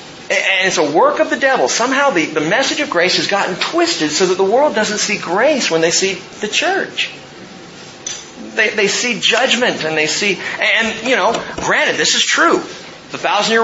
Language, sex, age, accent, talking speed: English, male, 40-59, American, 200 wpm